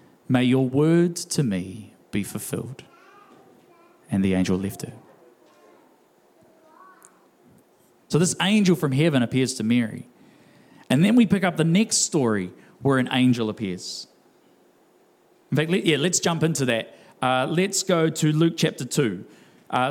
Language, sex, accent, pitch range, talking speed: English, male, Australian, 135-200 Hz, 140 wpm